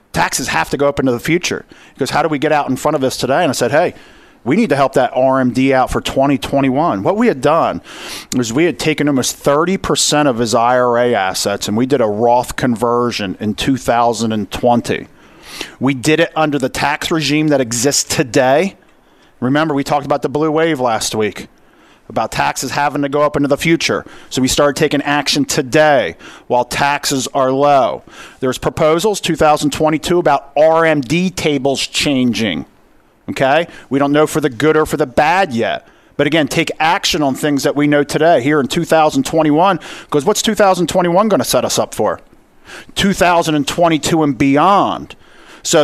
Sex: male